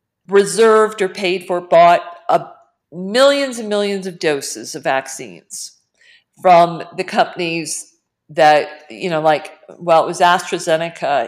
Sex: female